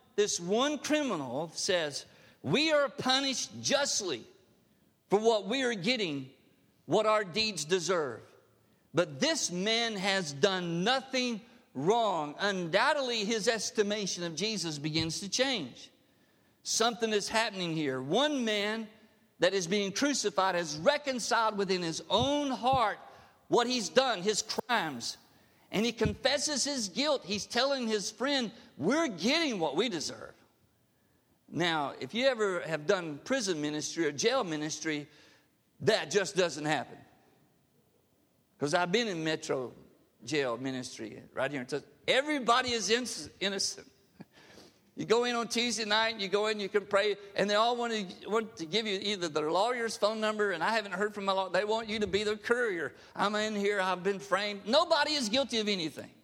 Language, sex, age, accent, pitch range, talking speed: English, male, 50-69, American, 190-245 Hz, 155 wpm